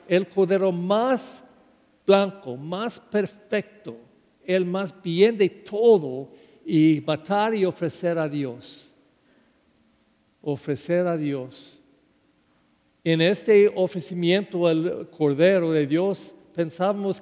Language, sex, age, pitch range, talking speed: English, male, 50-69, 165-205 Hz, 100 wpm